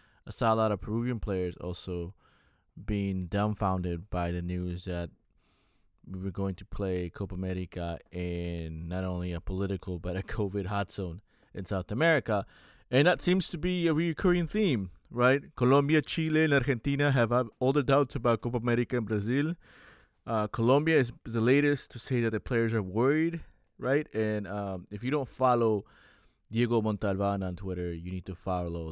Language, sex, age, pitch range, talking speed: English, male, 20-39, 95-125 Hz, 170 wpm